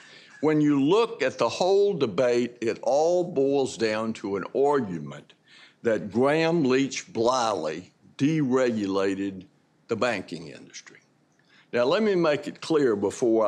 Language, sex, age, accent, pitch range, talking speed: English, male, 60-79, American, 115-160 Hz, 130 wpm